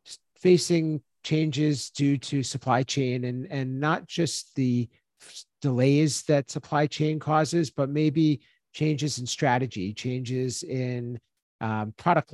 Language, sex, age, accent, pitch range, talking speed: English, male, 50-69, American, 125-140 Hz, 125 wpm